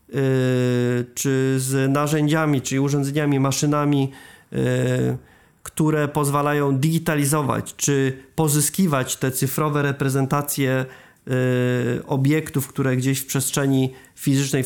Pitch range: 135-155 Hz